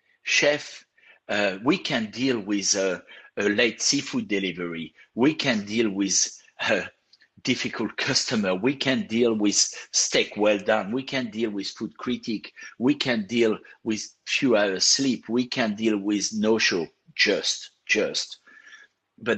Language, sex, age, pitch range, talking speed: English, male, 60-79, 110-150 Hz, 145 wpm